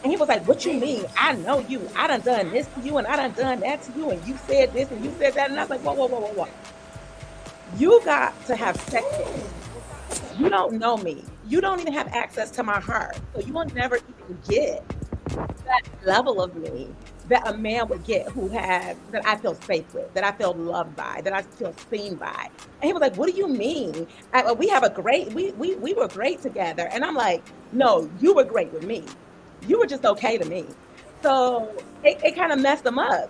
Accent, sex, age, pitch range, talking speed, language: American, female, 40-59, 225-300 Hz, 235 wpm, English